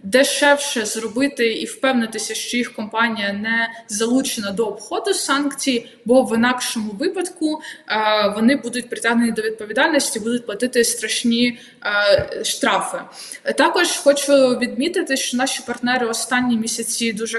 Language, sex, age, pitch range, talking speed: Ukrainian, female, 20-39, 220-265 Hz, 115 wpm